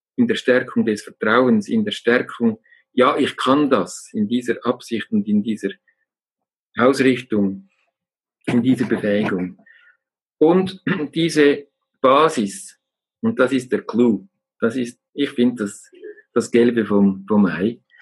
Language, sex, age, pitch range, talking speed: German, male, 50-69, 115-175 Hz, 130 wpm